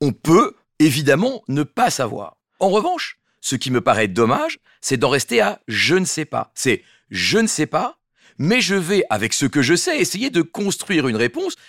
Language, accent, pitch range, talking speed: French, French, 135-225 Hz, 200 wpm